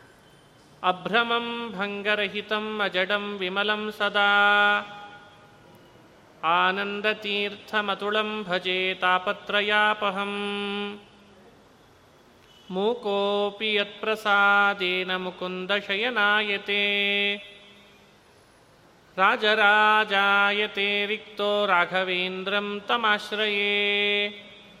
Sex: male